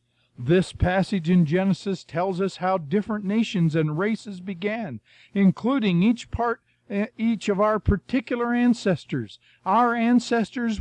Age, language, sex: 50-69, English, male